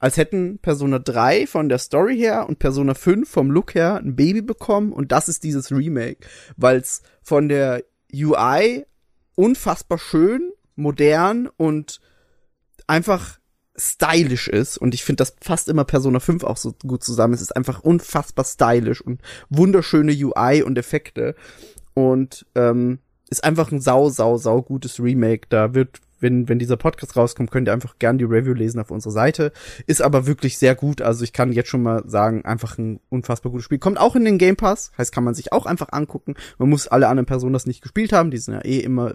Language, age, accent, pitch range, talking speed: German, 20-39, German, 125-160 Hz, 195 wpm